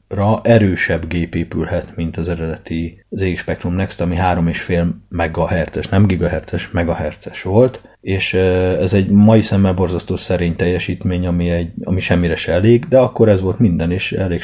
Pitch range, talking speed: 85-105 Hz, 160 wpm